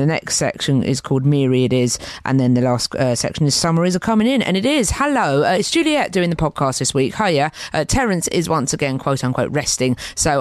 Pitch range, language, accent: 130-175 Hz, English, British